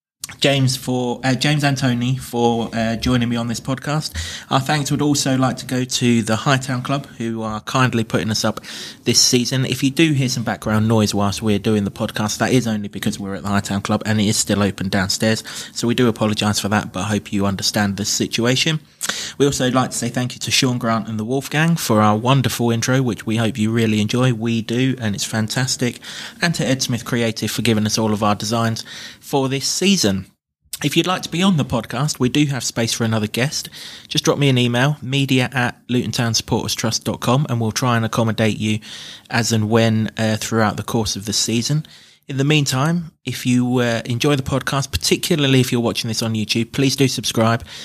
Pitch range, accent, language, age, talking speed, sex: 110-130 Hz, British, English, 20-39, 215 wpm, male